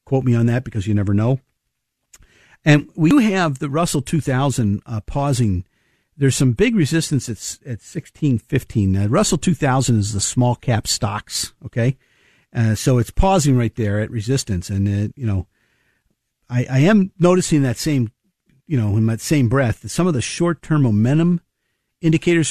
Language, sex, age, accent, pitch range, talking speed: English, male, 50-69, American, 115-150 Hz, 170 wpm